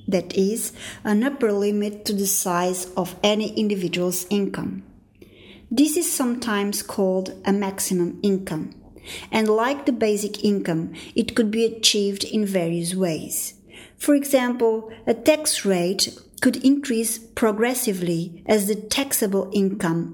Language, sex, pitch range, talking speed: English, female, 185-230 Hz, 130 wpm